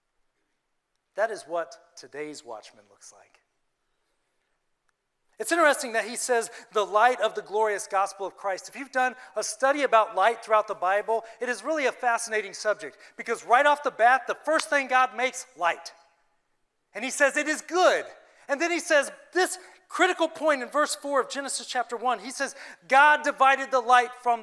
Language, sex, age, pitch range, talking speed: English, male, 40-59, 210-290 Hz, 180 wpm